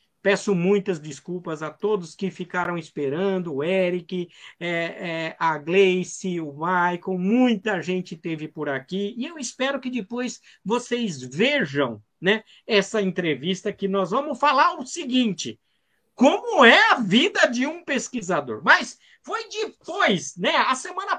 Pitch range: 190-285 Hz